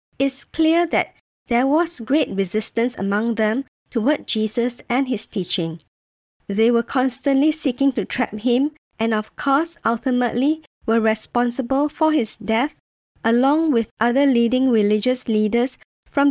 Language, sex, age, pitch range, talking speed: English, male, 50-69, 210-265 Hz, 135 wpm